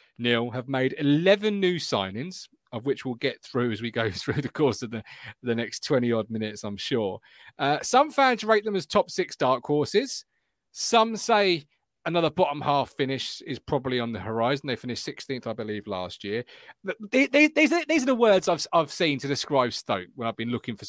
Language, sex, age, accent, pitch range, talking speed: English, male, 30-49, British, 120-200 Hz, 205 wpm